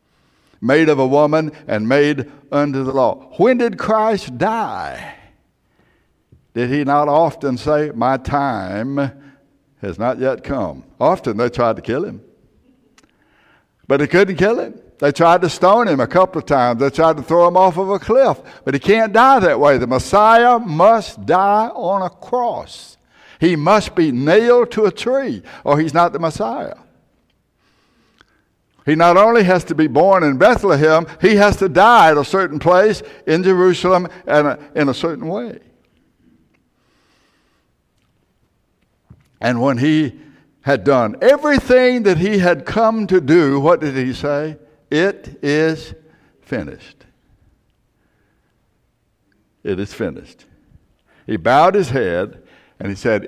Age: 60-79